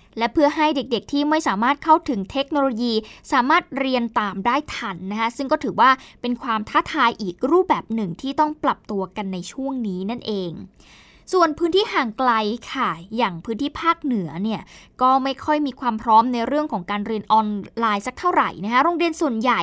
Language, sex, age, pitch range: Thai, female, 20-39, 220-305 Hz